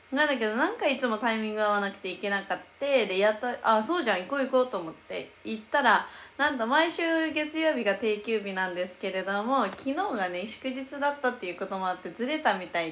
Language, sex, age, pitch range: Japanese, female, 20-39, 195-270 Hz